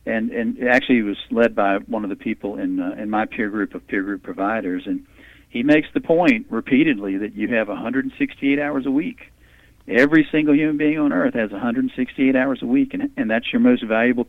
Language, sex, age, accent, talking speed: English, male, 50-69, American, 215 wpm